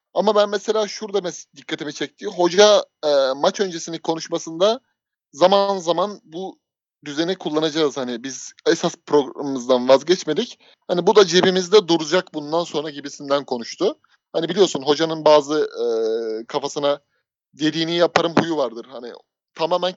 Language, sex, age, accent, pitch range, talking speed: Turkish, male, 30-49, native, 150-185 Hz, 130 wpm